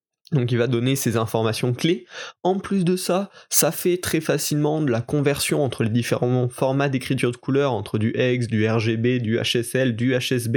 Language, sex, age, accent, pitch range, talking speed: French, male, 20-39, French, 125-155 Hz, 195 wpm